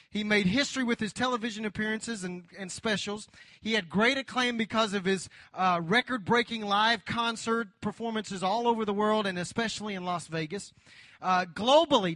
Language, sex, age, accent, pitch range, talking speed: English, male, 40-59, American, 185-230 Hz, 170 wpm